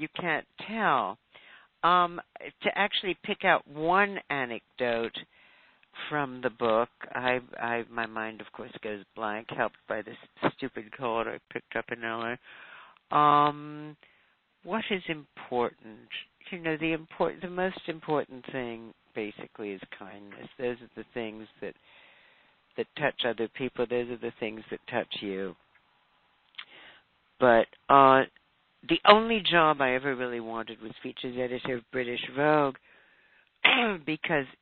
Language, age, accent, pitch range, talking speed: English, 50-69, American, 115-150 Hz, 135 wpm